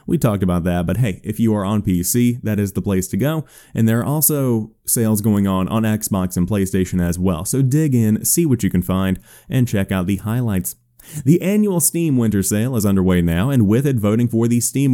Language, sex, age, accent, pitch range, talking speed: English, male, 30-49, American, 100-130 Hz, 235 wpm